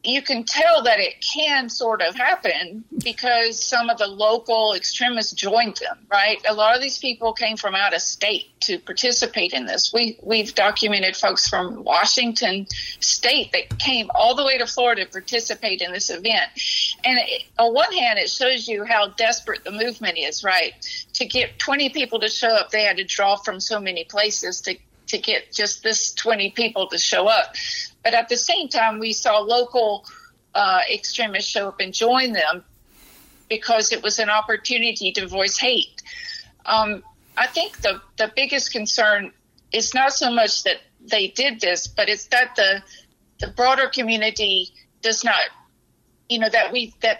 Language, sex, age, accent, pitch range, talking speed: English, female, 50-69, American, 210-255 Hz, 180 wpm